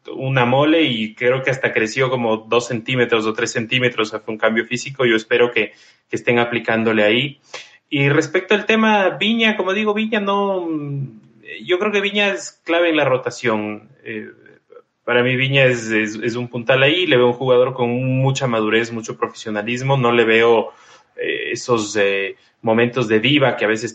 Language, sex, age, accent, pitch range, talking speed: Spanish, male, 20-39, Mexican, 120-160 Hz, 180 wpm